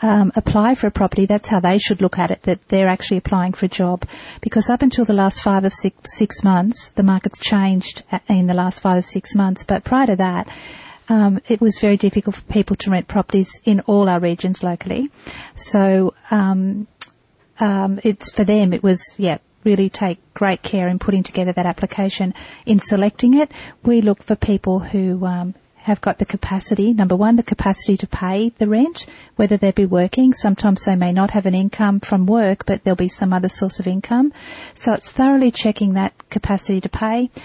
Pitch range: 190-220 Hz